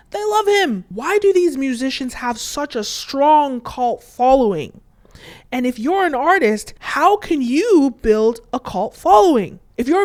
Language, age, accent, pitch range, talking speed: English, 30-49, American, 210-275 Hz, 160 wpm